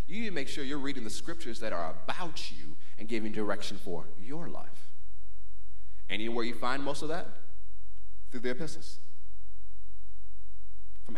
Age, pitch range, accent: 40-59, 85-130 Hz, American